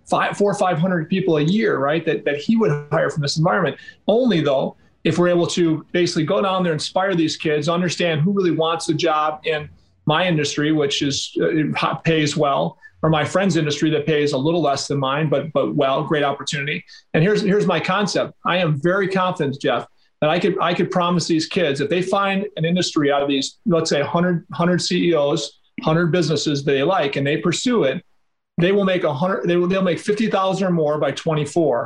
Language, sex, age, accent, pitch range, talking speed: English, male, 40-59, American, 150-185 Hz, 210 wpm